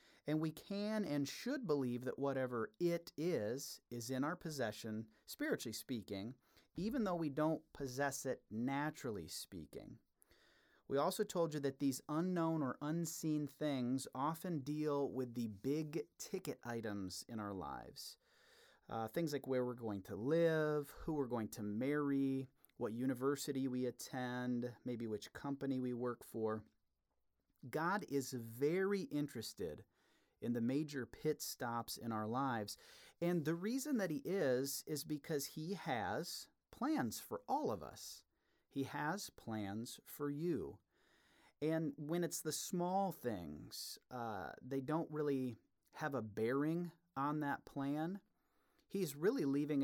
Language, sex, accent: English, male, American